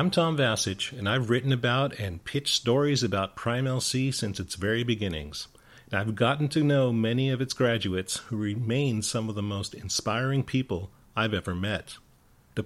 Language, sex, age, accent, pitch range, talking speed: English, male, 40-59, American, 105-130 Hz, 180 wpm